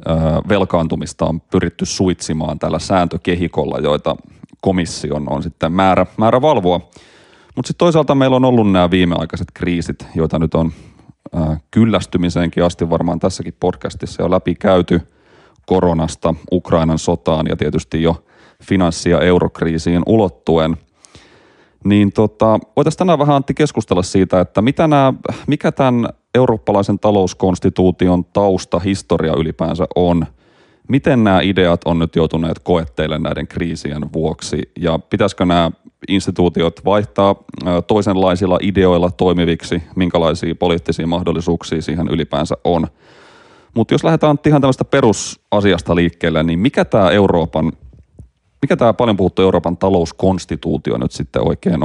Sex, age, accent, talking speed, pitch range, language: male, 30-49, native, 120 wpm, 80-100 Hz, Finnish